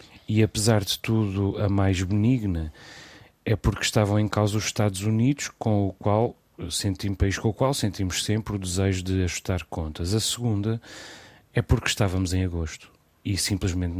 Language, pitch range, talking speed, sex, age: Portuguese, 95-115 Hz, 165 wpm, male, 30-49